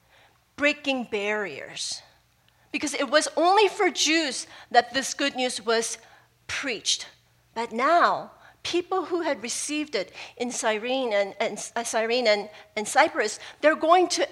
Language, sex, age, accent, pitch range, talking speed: English, female, 40-59, American, 230-310 Hz, 135 wpm